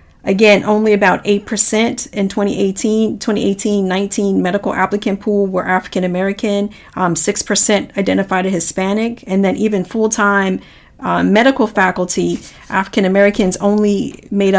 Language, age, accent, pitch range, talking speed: English, 40-59, American, 185-220 Hz, 125 wpm